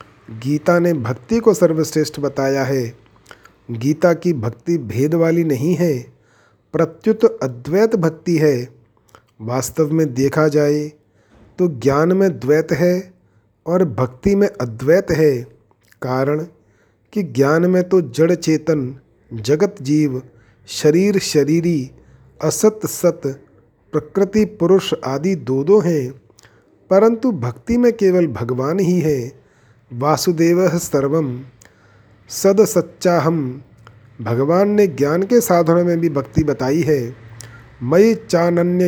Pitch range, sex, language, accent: 130-175 Hz, male, Hindi, native